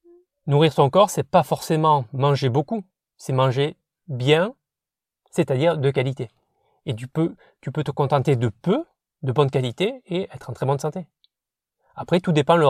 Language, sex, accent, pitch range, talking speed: French, male, French, 130-160 Hz, 175 wpm